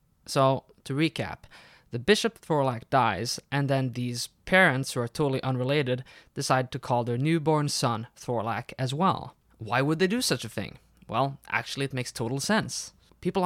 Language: English